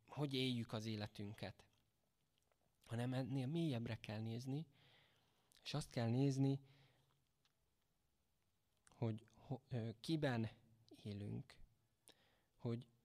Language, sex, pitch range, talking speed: Hungarian, male, 110-135 Hz, 85 wpm